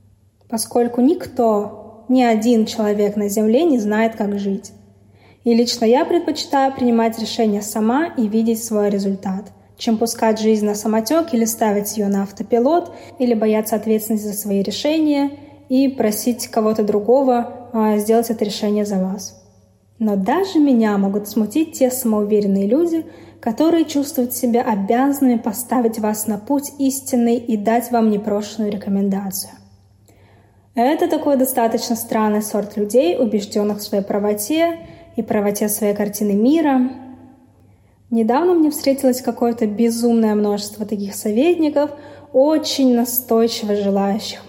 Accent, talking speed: native, 130 wpm